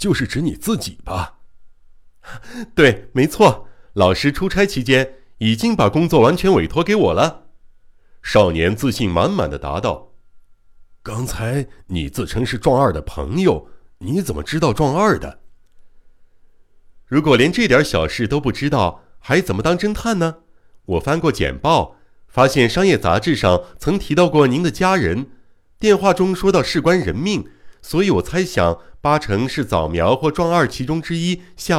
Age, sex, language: 60-79, male, Chinese